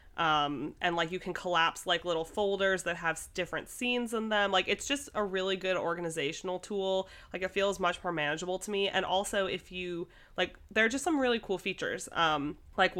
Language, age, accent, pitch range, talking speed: English, 30-49, American, 165-195 Hz, 210 wpm